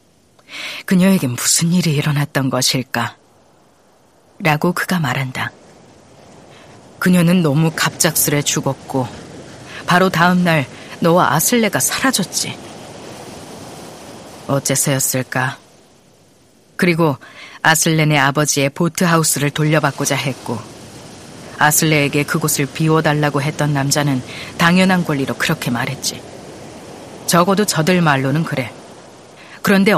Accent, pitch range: native, 135-175 Hz